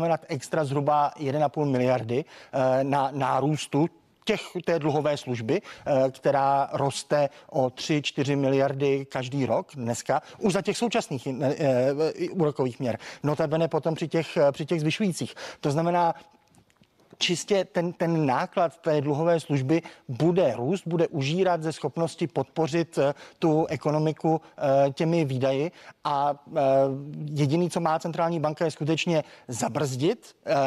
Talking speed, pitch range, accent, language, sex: 125 wpm, 140-170 Hz, native, Czech, male